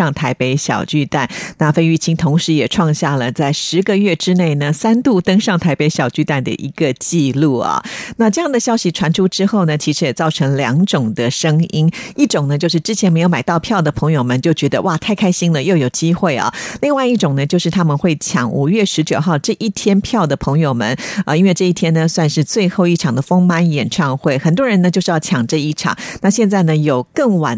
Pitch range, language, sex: 150-185 Hz, Chinese, female